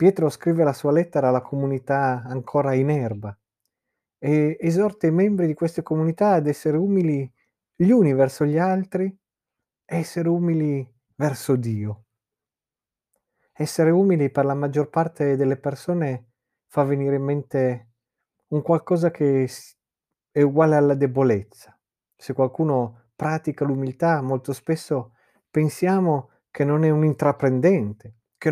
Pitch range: 125-165 Hz